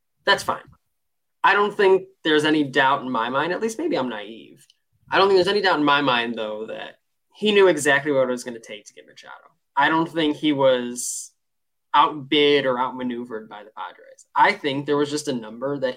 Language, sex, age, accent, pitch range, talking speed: English, male, 20-39, American, 125-180 Hz, 220 wpm